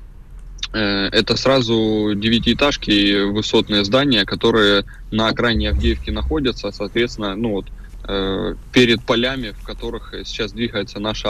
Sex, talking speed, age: male, 115 wpm, 20-39